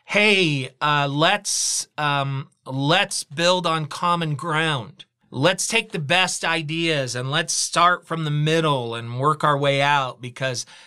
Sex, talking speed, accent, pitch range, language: male, 145 wpm, American, 135-165 Hz, English